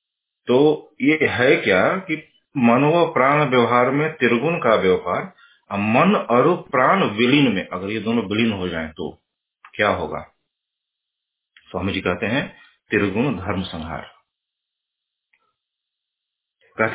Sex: male